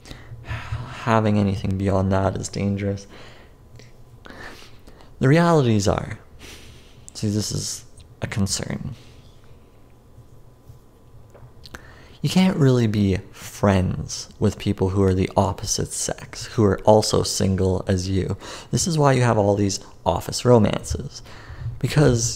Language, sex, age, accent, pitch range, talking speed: English, male, 30-49, American, 100-120 Hz, 115 wpm